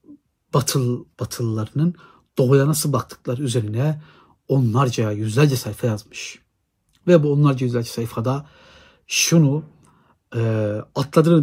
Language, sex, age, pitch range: Turkish, male, 60-79, 120-150 Hz